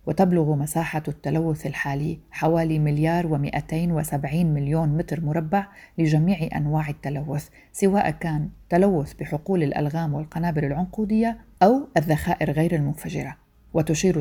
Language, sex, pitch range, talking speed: Arabic, female, 150-175 Hz, 110 wpm